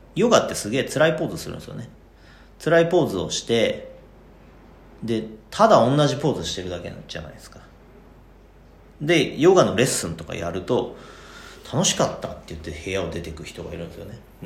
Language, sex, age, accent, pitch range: Japanese, male, 40-59, native, 90-150 Hz